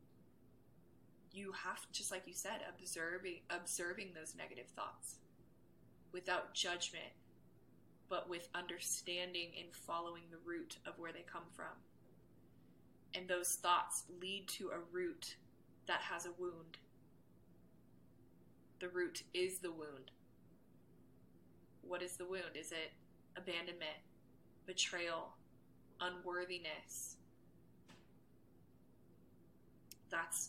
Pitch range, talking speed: 170-185 Hz, 100 wpm